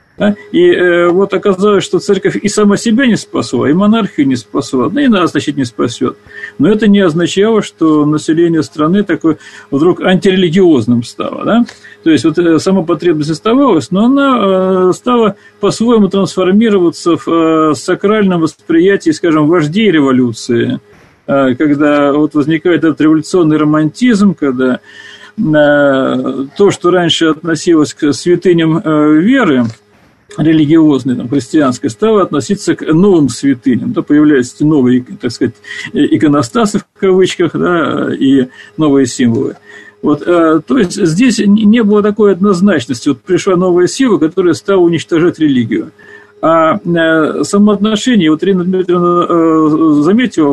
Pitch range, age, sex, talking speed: 150-210 Hz, 40-59, male, 125 wpm